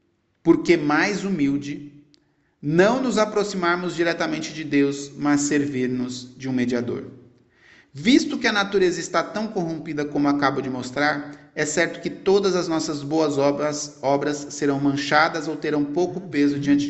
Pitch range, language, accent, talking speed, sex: 125-160 Hz, Portuguese, Brazilian, 140 wpm, male